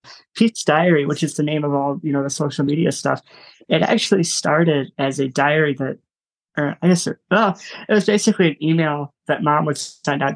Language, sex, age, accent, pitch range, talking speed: English, male, 20-39, American, 145-170 Hz, 205 wpm